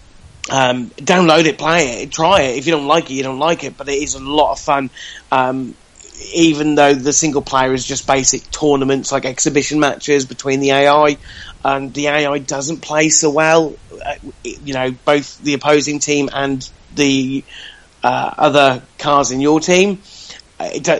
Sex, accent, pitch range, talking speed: male, British, 125-150 Hz, 175 wpm